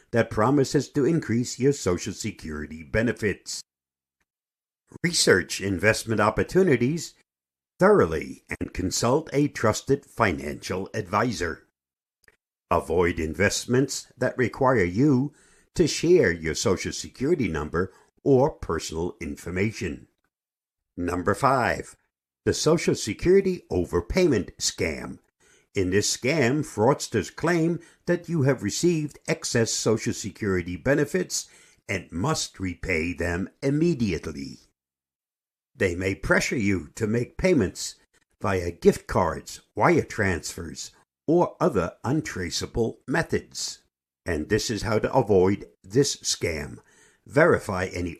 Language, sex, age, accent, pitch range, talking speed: English, male, 60-79, American, 85-135 Hz, 105 wpm